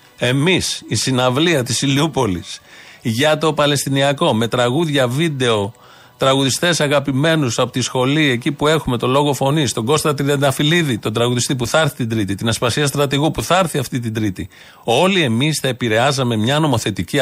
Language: Greek